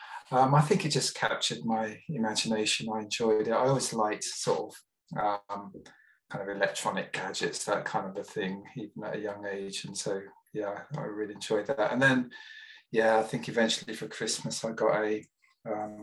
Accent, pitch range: British, 105-140 Hz